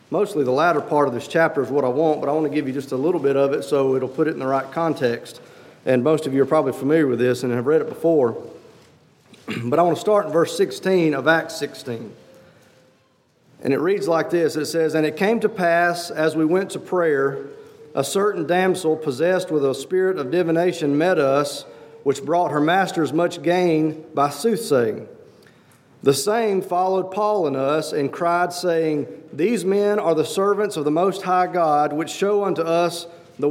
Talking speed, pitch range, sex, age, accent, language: 210 wpm, 155-190 Hz, male, 40-59, American, English